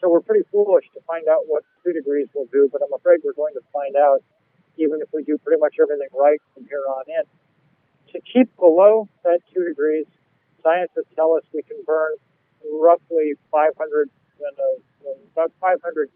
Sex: male